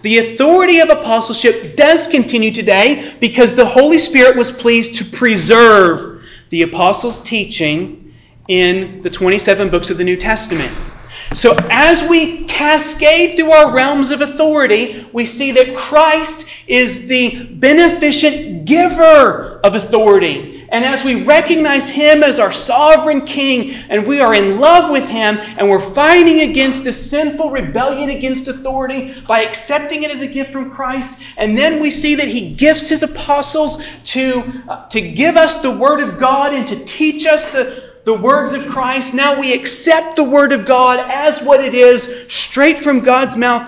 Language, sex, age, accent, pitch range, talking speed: English, male, 40-59, American, 220-295 Hz, 165 wpm